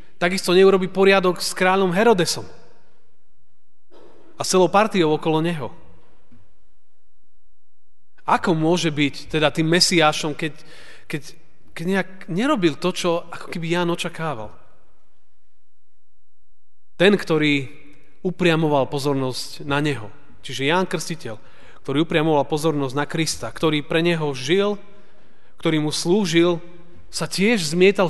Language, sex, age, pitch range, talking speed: Slovak, male, 30-49, 140-175 Hz, 110 wpm